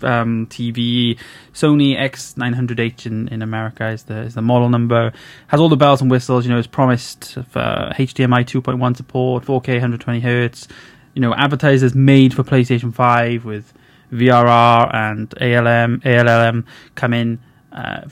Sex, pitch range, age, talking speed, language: male, 120-140 Hz, 20-39, 150 wpm, English